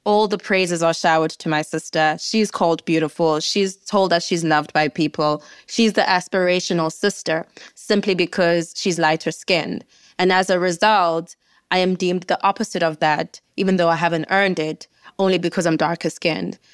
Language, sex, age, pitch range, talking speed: English, female, 20-39, 165-190 Hz, 175 wpm